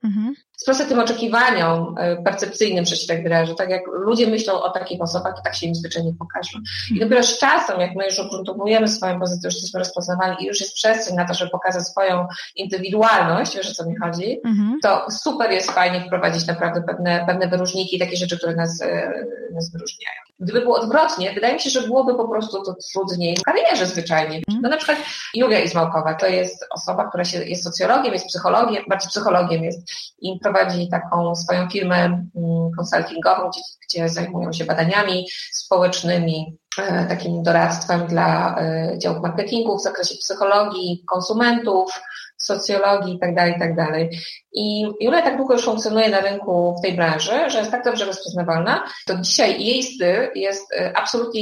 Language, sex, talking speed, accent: Polish, female, 170 wpm, native